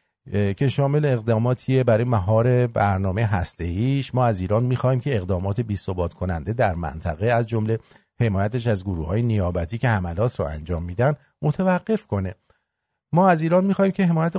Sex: male